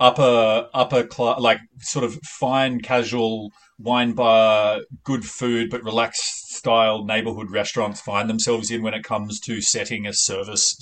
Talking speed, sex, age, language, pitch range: 150 wpm, male, 30-49, English, 105-125 Hz